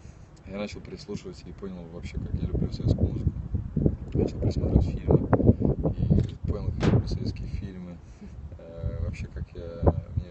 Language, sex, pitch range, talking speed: Russian, male, 85-100 Hz, 150 wpm